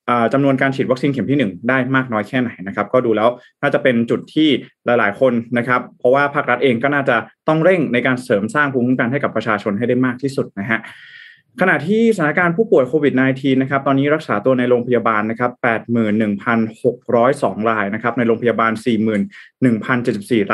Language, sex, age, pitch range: Thai, male, 20-39, 115-145 Hz